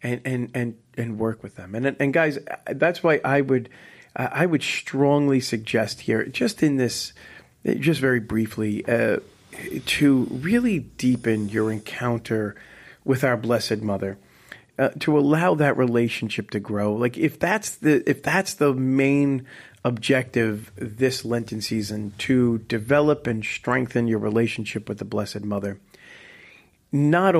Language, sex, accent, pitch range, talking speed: English, male, American, 105-130 Hz, 145 wpm